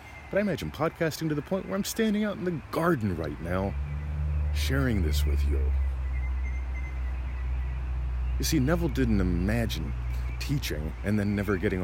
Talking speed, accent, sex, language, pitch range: 150 wpm, American, male, English, 70-95 Hz